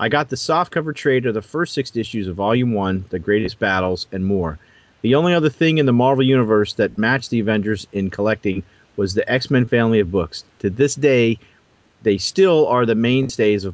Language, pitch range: English, 105-135 Hz